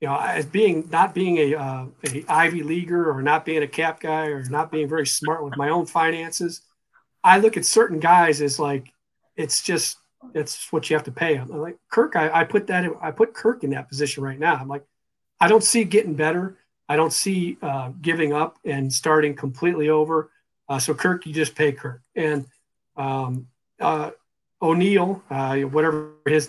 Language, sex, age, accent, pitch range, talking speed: English, male, 40-59, American, 140-170 Hz, 200 wpm